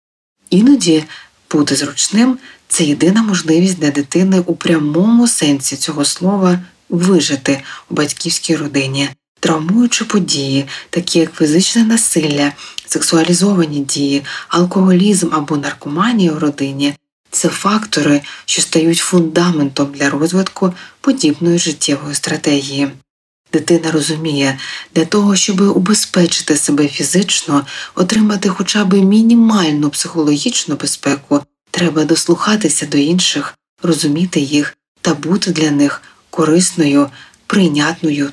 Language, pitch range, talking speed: Ukrainian, 145-185 Hz, 105 wpm